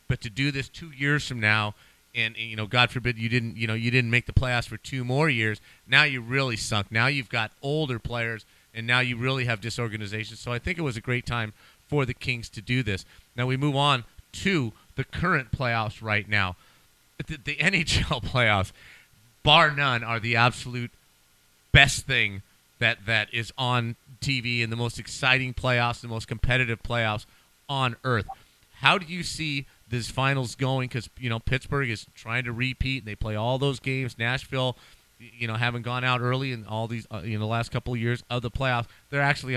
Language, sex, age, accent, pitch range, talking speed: English, male, 40-59, American, 110-130 Hz, 205 wpm